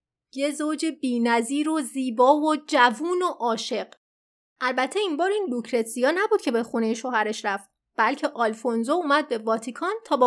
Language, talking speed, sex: Persian, 160 wpm, female